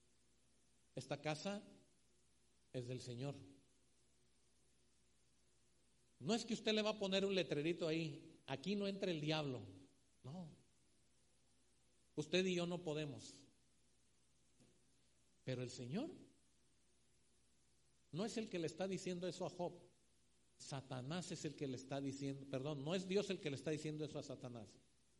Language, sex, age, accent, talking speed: Spanish, male, 50-69, Mexican, 140 wpm